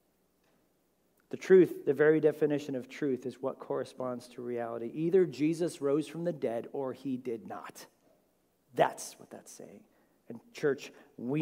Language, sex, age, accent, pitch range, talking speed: English, male, 40-59, American, 135-180 Hz, 150 wpm